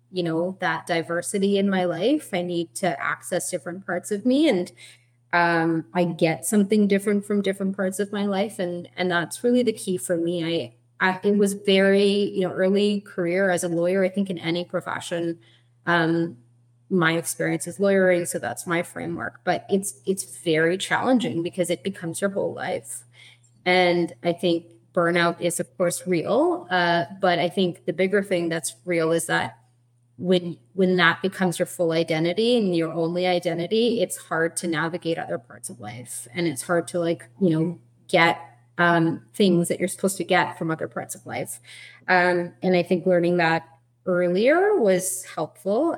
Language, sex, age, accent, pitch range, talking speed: English, female, 20-39, American, 165-190 Hz, 180 wpm